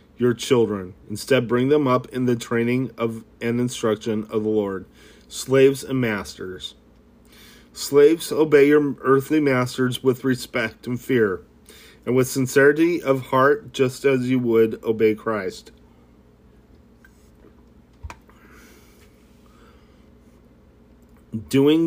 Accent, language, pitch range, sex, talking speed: American, English, 115-135 Hz, male, 105 wpm